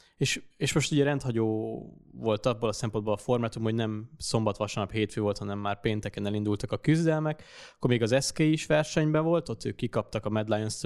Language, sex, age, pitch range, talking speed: Hungarian, male, 20-39, 105-130 Hz, 195 wpm